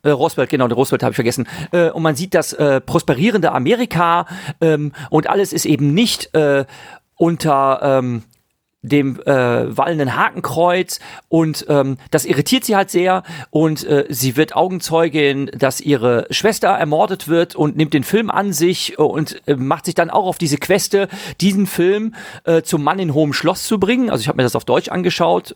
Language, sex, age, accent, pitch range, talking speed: English, male, 40-59, German, 150-195 Hz, 180 wpm